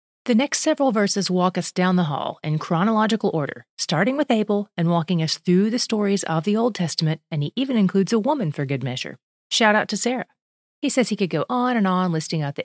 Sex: female